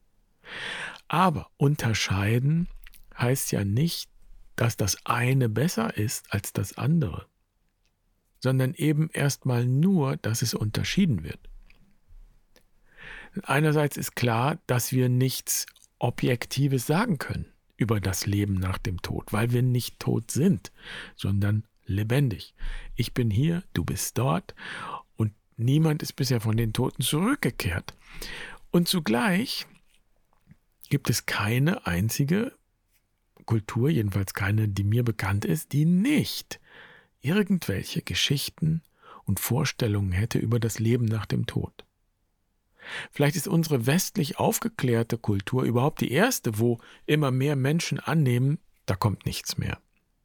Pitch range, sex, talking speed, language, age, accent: 105-150 Hz, male, 120 wpm, German, 50-69, German